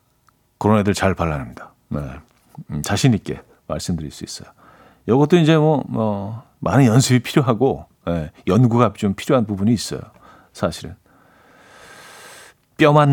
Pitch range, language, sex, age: 115-160 Hz, Korean, male, 50-69